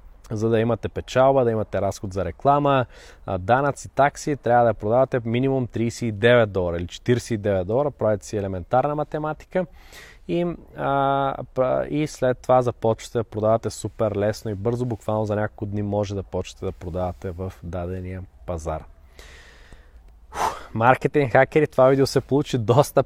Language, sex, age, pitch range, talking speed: Bulgarian, male, 20-39, 105-130 Hz, 145 wpm